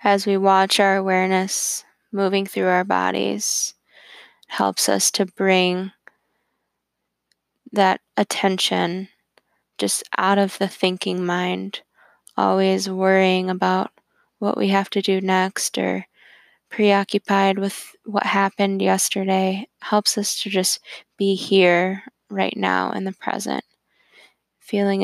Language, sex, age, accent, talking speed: English, female, 10-29, American, 120 wpm